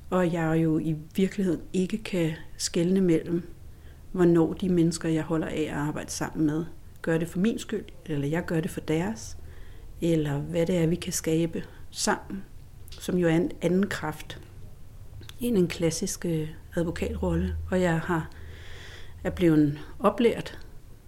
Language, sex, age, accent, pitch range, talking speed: Danish, female, 60-79, native, 145-175 Hz, 150 wpm